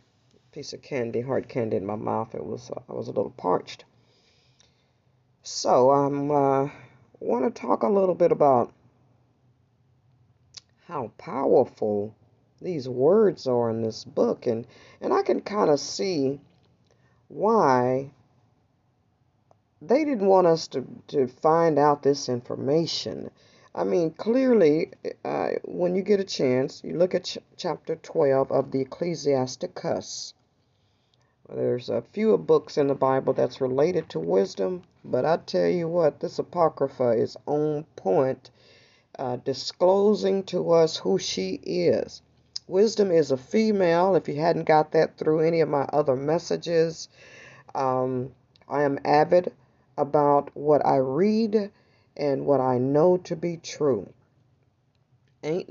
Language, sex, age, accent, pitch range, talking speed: English, female, 50-69, American, 125-165 Hz, 140 wpm